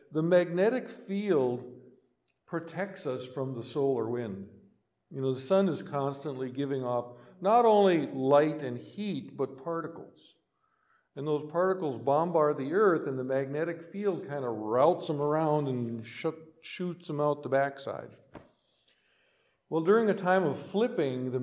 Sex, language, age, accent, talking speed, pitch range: male, English, 50-69, American, 145 wpm, 135-190 Hz